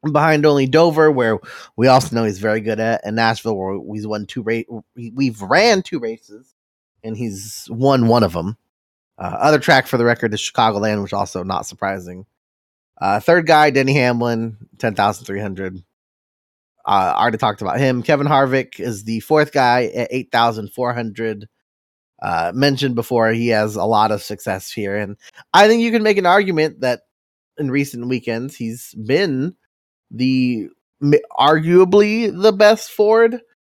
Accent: American